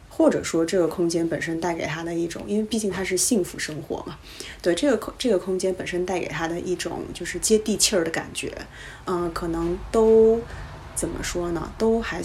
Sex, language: female, Chinese